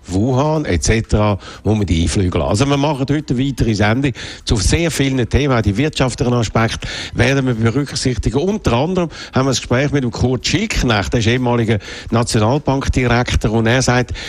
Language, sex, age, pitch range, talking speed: German, male, 60-79, 110-140 Hz, 170 wpm